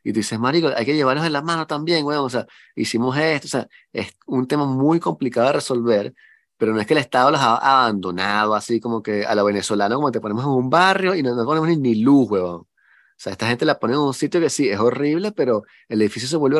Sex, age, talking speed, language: male, 30-49, 255 wpm, Spanish